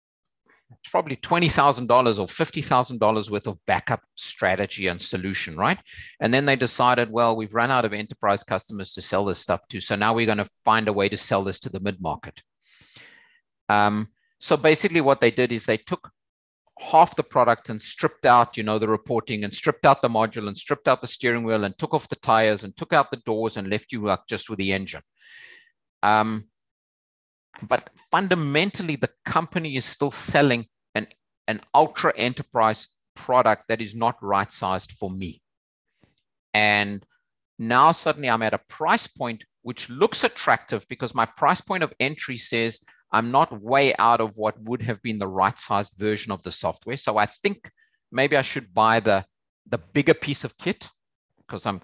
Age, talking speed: 50-69, 185 wpm